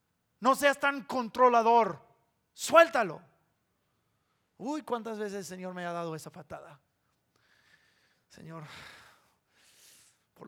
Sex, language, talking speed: male, English, 95 wpm